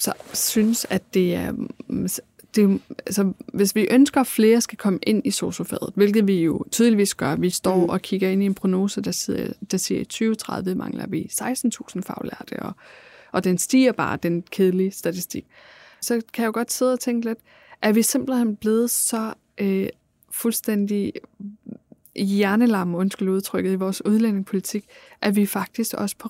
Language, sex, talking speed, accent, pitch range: Danish, female, 170 wpm, native, 195-230 Hz